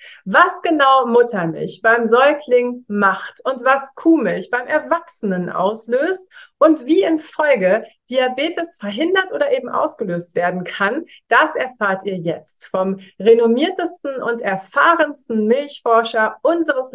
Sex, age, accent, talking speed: female, 30-49, German, 115 wpm